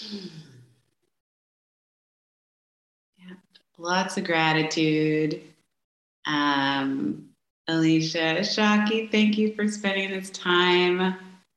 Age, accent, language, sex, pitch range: 30-49, American, English, female, 145-175 Hz